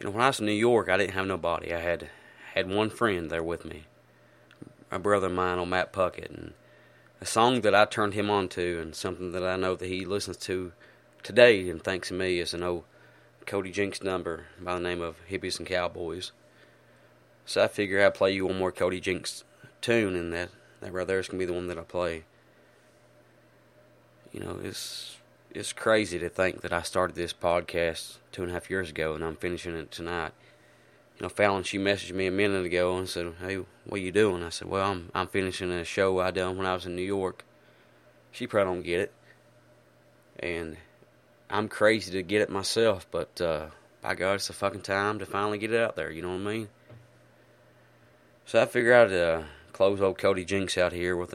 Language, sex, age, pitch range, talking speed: English, male, 20-39, 85-100 Hz, 215 wpm